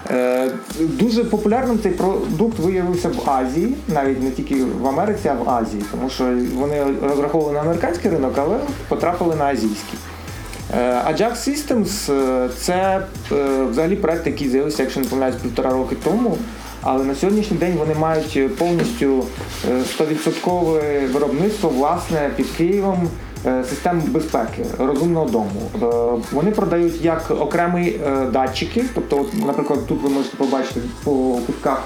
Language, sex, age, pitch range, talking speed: Ukrainian, male, 30-49, 130-175 Hz, 130 wpm